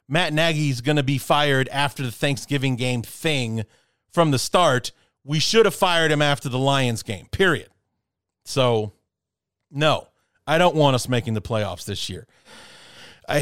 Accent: American